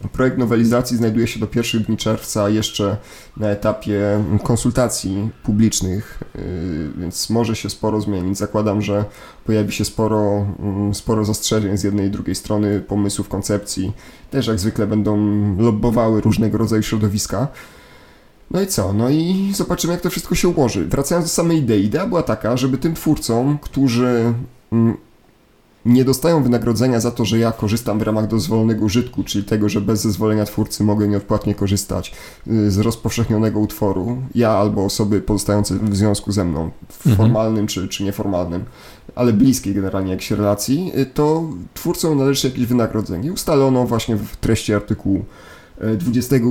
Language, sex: Polish, male